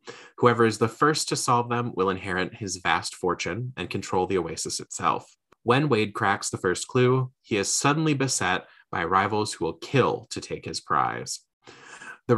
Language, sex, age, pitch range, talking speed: English, male, 20-39, 105-125 Hz, 180 wpm